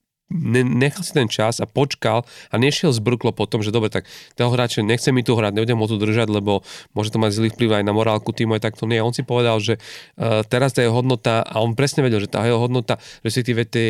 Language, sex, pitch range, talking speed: Slovak, male, 110-125 Hz, 235 wpm